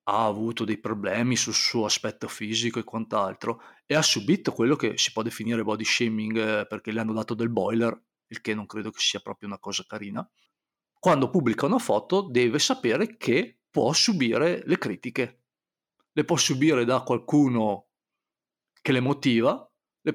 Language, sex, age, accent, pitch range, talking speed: Italian, male, 40-59, native, 115-150 Hz, 165 wpm